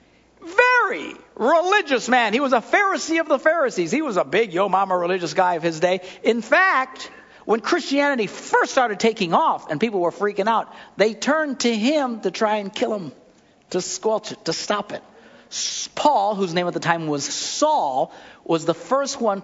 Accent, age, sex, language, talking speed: American, 60-79, male, English, 190 wpm